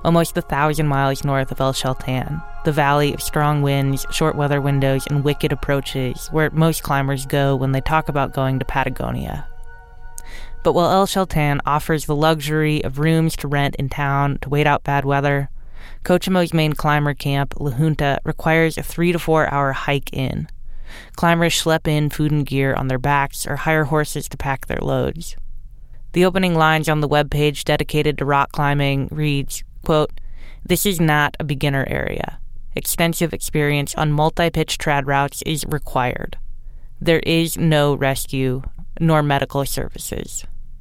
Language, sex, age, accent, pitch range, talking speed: English, female, 20-39, American, 140-155 Hz, 160 wpm